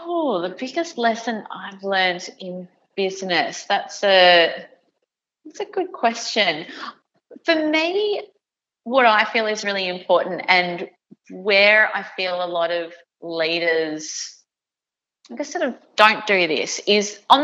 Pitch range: 170-220 Hz